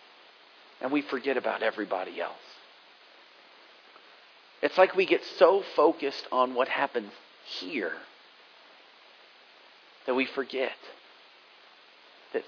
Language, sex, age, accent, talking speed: English, male, 40-59, American, 95 wpm